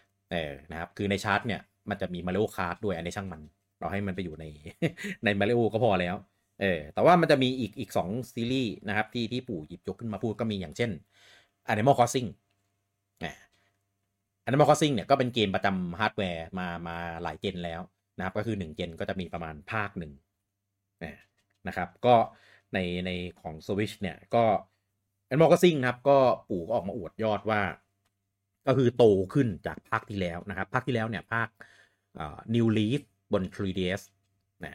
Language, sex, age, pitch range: Thai, male, 30-49, 90-110 Hz